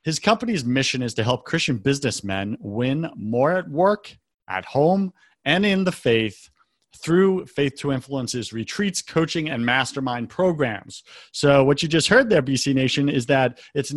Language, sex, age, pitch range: English, male, 40-59, 125-160 Hz